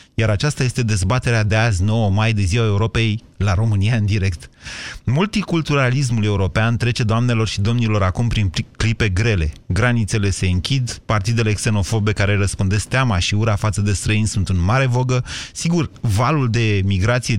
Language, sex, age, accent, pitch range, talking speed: Romanian, male, 30-49, native, 110-135 Hz, 160 wpm